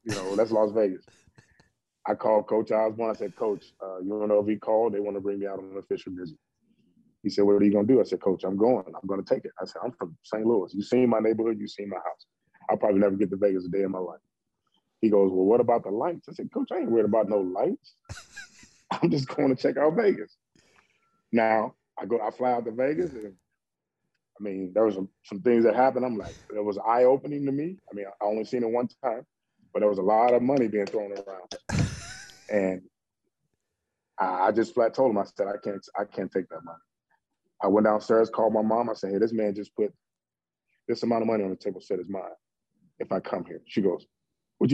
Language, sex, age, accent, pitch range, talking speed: English, male, 20-39, American, 100-120 Hz, 245 wpm